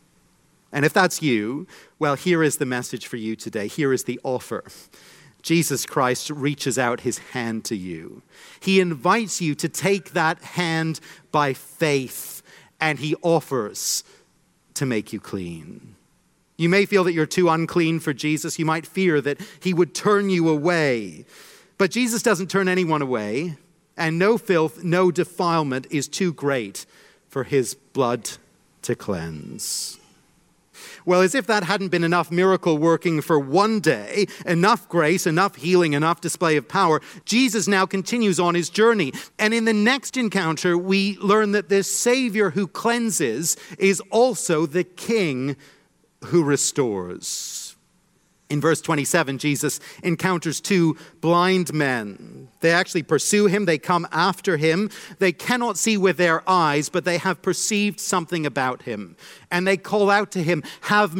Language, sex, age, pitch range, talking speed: English, male, 40-59, 150-195 Hz, 155 wpm